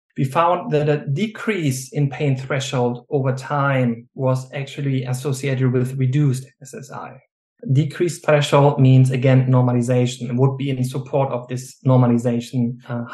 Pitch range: 130-155 Hz